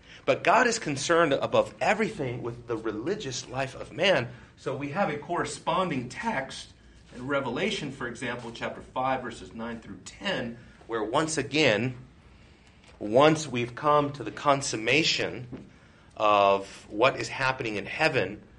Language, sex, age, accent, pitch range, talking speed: English, male, 40-59, American, 115-160 Hz, 140 wpm